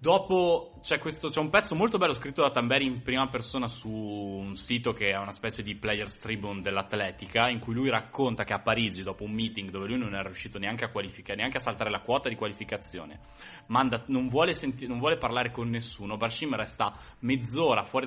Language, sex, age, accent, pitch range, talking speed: Italian, male, 20-39, native, 110-135 Hz, 210 wpm